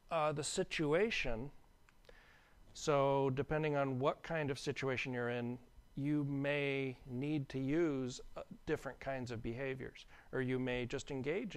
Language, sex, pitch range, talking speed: English, male, 115-145 Hz, 140 wpm